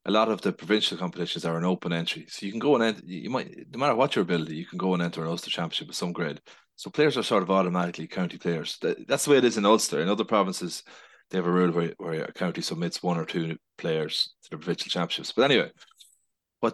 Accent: Irish